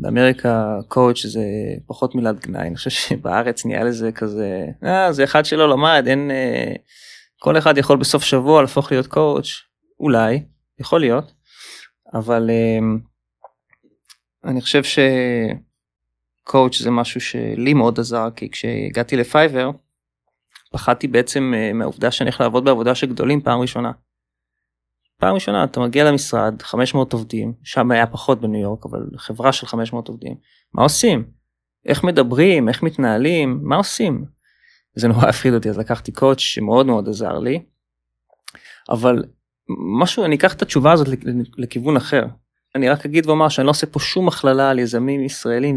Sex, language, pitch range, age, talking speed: male, Hebrew, 115-135 Hz, 20-39, 145 wpm